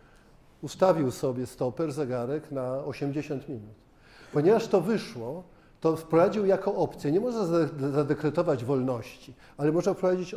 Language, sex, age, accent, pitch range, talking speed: Polish, male, 50-69, native, 130-175 Hz, 120 wpm